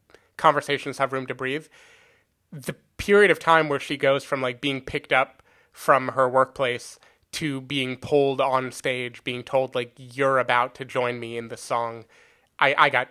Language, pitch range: English, 125-150 Hz